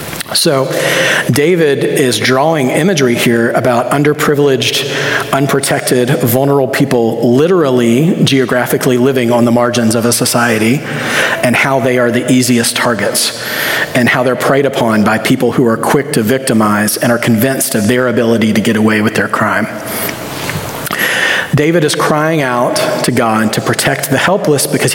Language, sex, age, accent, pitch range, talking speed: English, male, 40-59, American, 120-140 Hz, 150 wpm